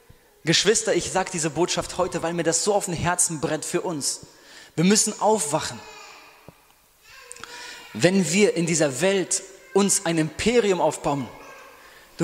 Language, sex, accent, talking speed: German, male, German, 140 wpm